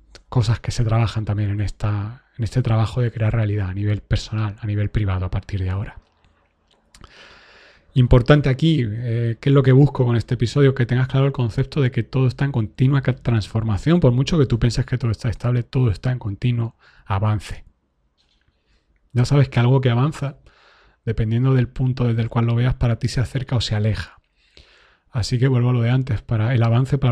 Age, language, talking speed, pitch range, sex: 30-49, Spanish, 200 wpm, 115-135 Hz, male